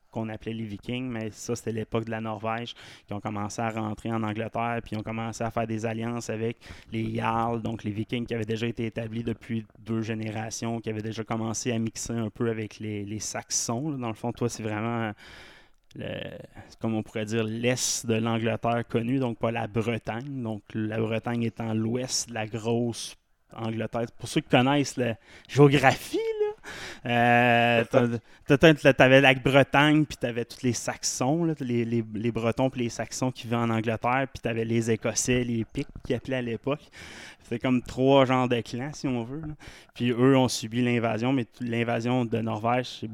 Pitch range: 110-125 Hz